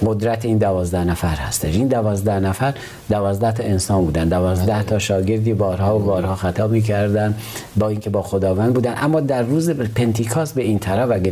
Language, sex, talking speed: Persian, male, 175 wpm